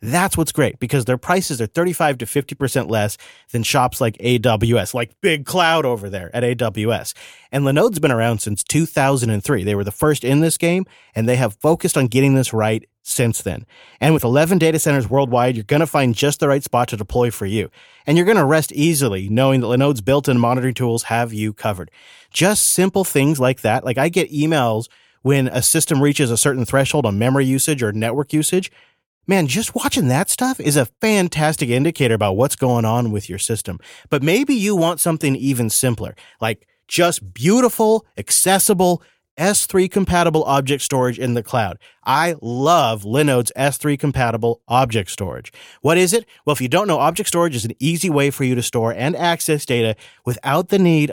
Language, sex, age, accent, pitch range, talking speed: English, male, 30-49, American, 120-160 Hz, 190 wpm